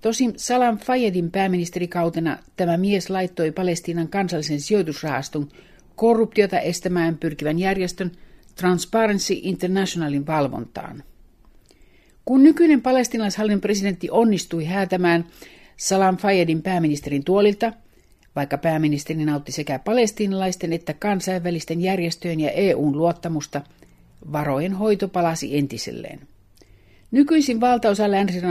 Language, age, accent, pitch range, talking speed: Finnish, 60-79, native, 155-200 Hz, 95 wpm